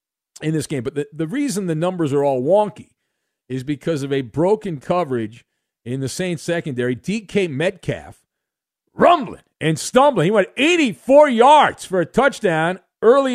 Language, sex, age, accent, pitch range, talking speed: English, male, 50-69, American, 165-235 Hz, 155 wpm